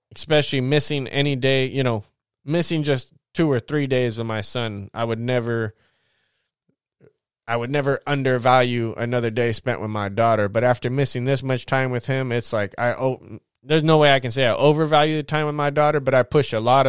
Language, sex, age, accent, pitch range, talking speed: English, male, 20-39, American, 120-140 Hz, 205 wpm